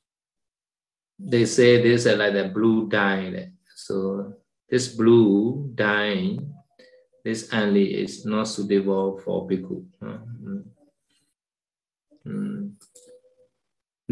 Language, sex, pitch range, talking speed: Vietnamese, male, 100-160 Hz, 90 wpm